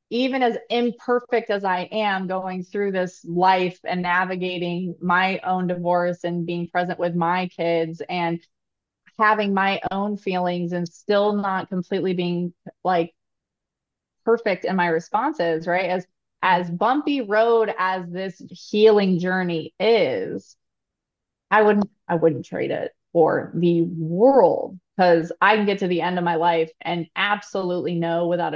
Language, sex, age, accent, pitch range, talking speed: English, female, 20-39, American, 170-200 Hz, 145 wpm